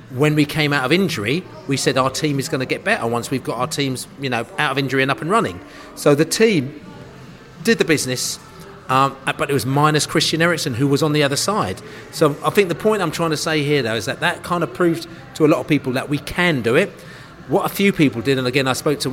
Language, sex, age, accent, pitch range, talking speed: English, male, 30-49, British, 135-170 Hz, 265 wpm